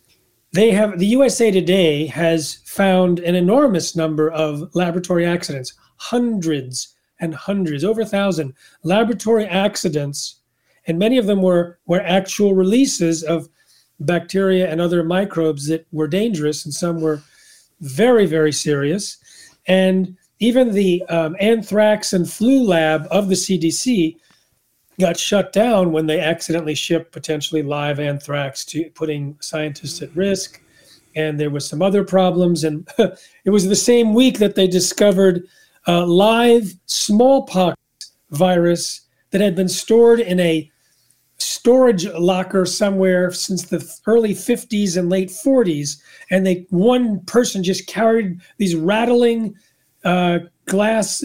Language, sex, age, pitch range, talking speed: English, male, 40-59, 160-205 Hz, 135 wpm